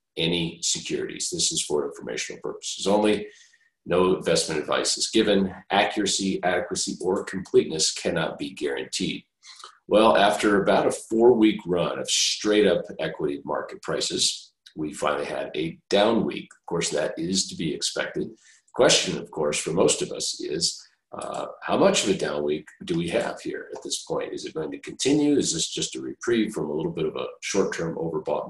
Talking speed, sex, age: 175 wpm, male, 50-69